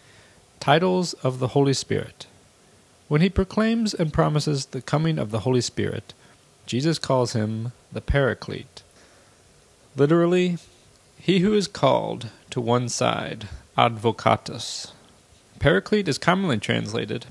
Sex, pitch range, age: male, 110-150 Hz, 30-49